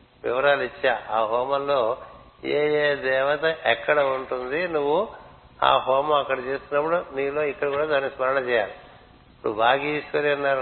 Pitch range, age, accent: 125-145 Hz, 60-79, native